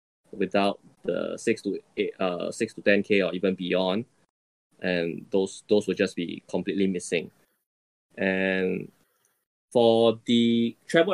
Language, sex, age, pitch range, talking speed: English, male, 20-39, 95-120 Hz, 130 wpm